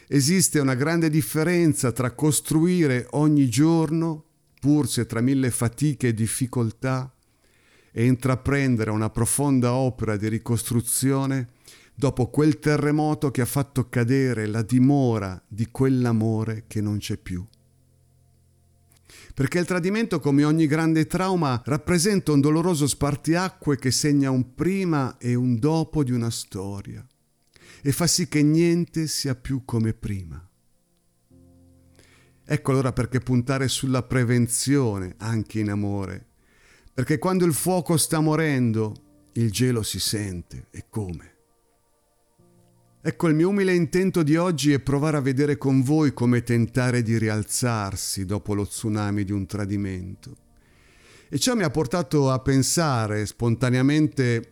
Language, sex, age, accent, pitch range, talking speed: Italian, male, 50-69, native, 110-150 Hz, 130 wpm